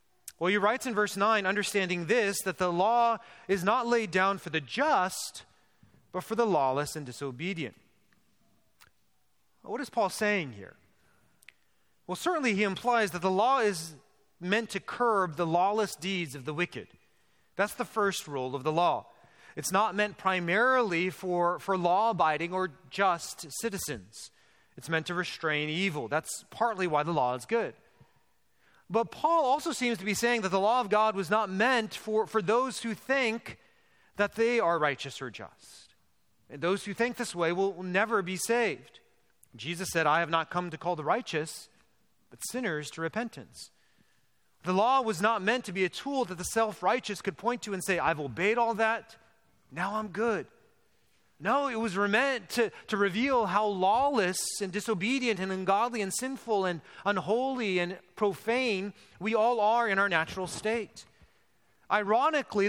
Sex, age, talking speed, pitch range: male, 30-49, 170 wpm, 175-225 Hz